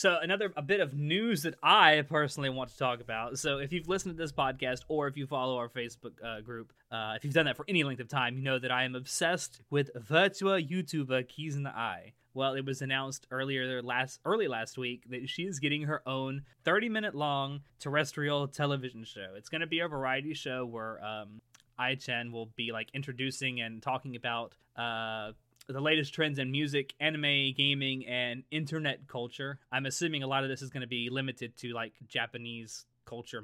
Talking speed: 205 wpm